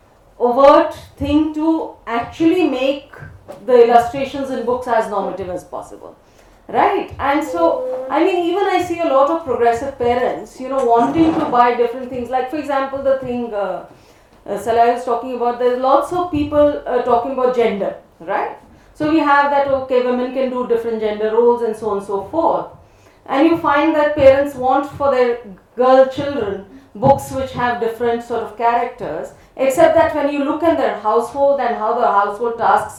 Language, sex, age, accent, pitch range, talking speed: Tamil, female, 40-59, native, 230-285 Hz, 185 wpm